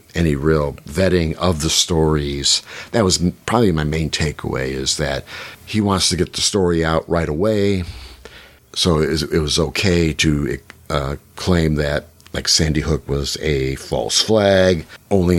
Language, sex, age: English, male, 50-69